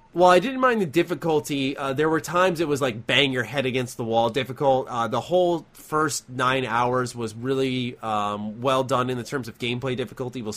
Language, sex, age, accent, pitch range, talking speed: English, male, 20-39, American, 110-140 Hz, 215 wpm